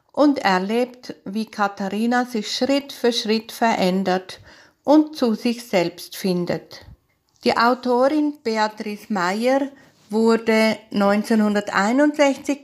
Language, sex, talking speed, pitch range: German, female, 95 wpm, 195-245 Hz